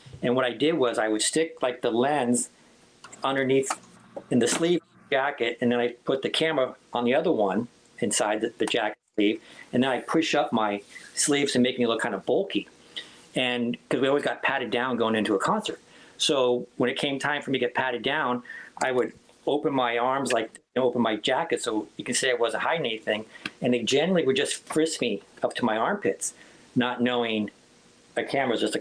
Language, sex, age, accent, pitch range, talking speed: English, male, 50-69, American, 115-145 Hz, 215 wpm